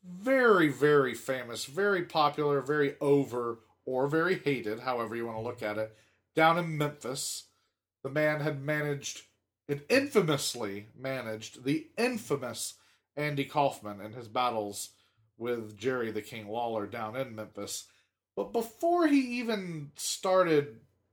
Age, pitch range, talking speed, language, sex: 40-59, 110-150 Hz, 135 wpm, English, male